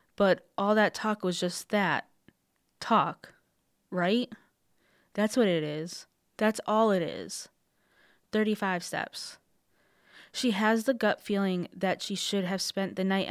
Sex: female